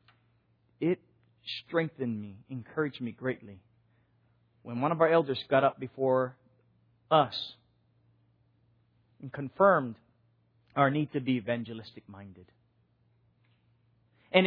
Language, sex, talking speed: English, male, 100 wpm